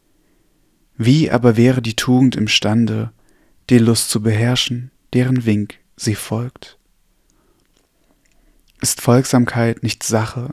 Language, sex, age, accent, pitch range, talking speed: German, male, 30-49, German, 110-130 Hz, 105 wpm